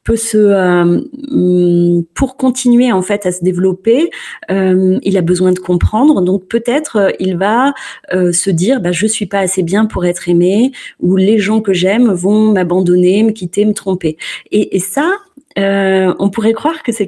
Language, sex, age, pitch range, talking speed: French, female, 30-49, 180-225 Hz, 185 wpm